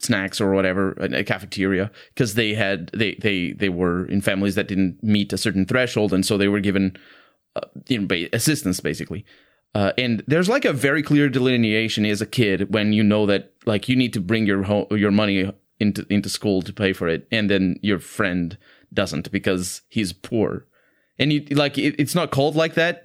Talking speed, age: 200 wpm, 30-49